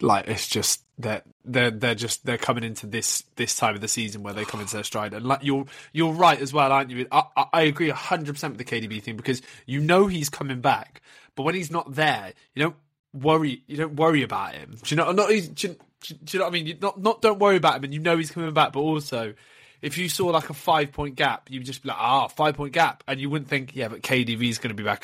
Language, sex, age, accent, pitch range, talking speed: English, male, 20-39, British, 120-155 Hz, 270 wpm